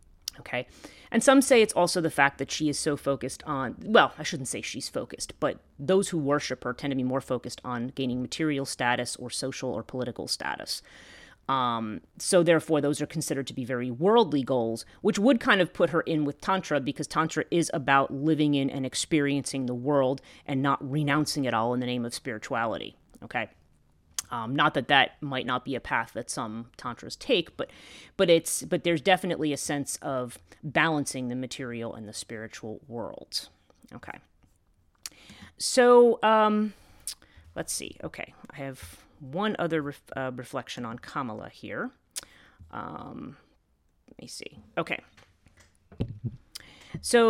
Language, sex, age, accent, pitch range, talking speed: English, female, 30-49, American, 125-160 Hz, 165 wpm